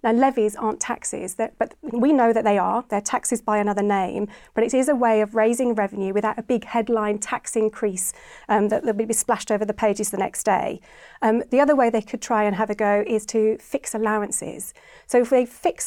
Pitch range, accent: 215-250 Hz, British